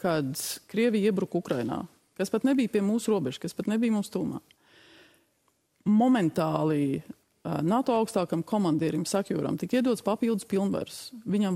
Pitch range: 170-225 Hz